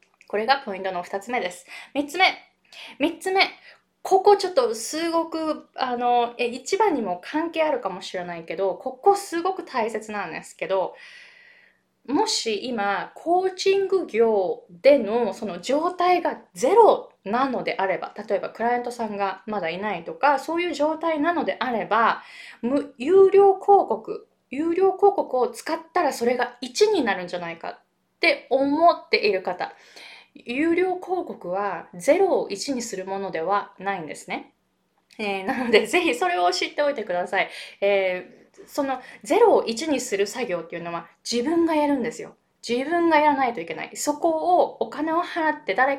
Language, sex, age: Japanese, female, 20-39